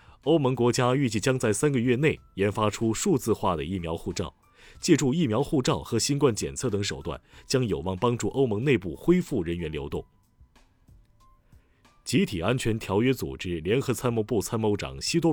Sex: male